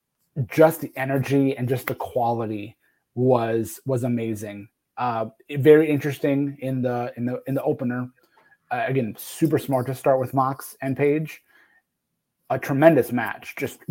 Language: English